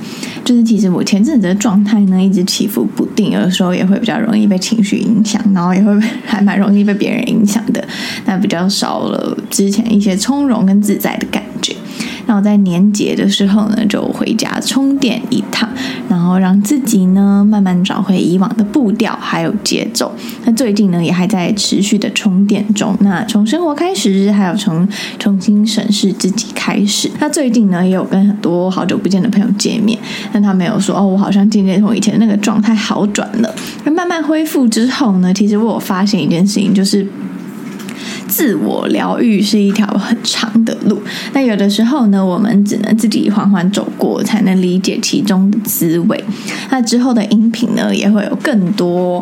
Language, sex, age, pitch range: Chinese, female, 20-39, 200-230 Hz